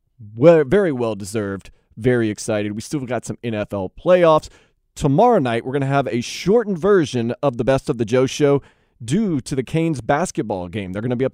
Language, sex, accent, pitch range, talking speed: English, male, American, 120-160 Hz, 205 wpm